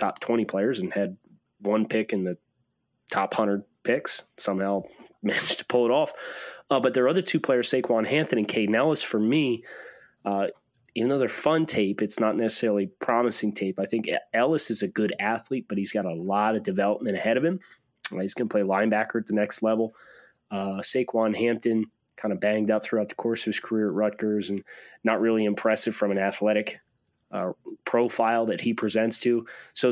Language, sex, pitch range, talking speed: English, male, 105-120 Hz, 200 wpm